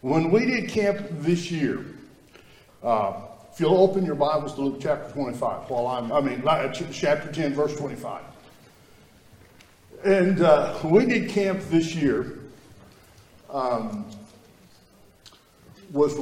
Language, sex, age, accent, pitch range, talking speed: English, male, 60-79, American, 135-185 Hz, 110 wpm